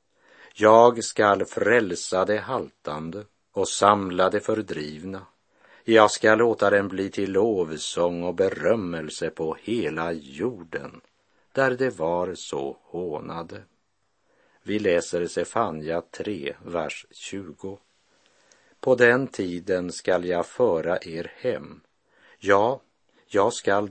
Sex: male